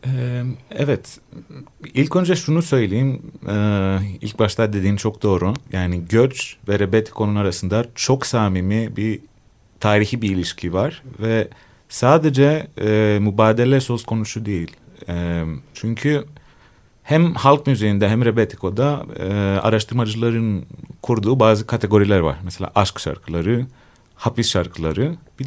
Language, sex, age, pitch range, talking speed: Turkish, male, 30-49, 100-130 Hz, 115 wpm